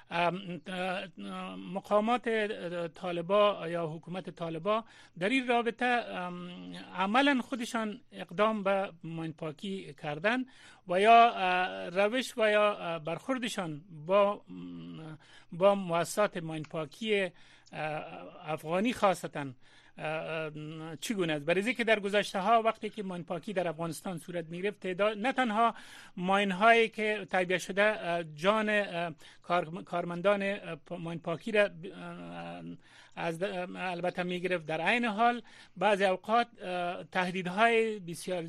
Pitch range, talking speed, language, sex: 165-210 Hz, 100 wpm, Persian, male